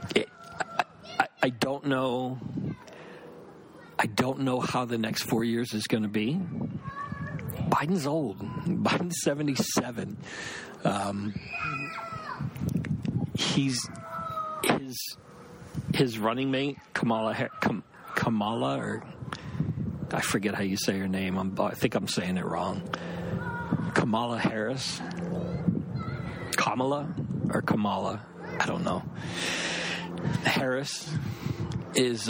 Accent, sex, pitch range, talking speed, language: American, male, 110-150 Hz, 95 wpm, English